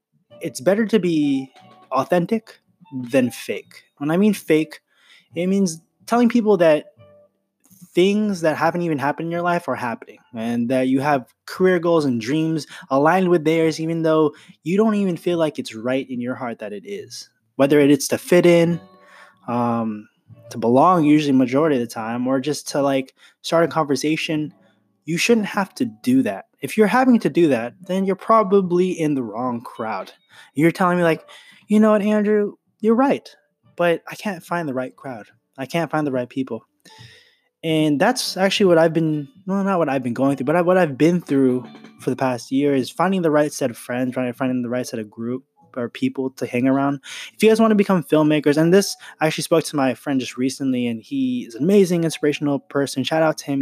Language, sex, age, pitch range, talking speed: English, male, 20-39, 130-180 Hz, 205 wpm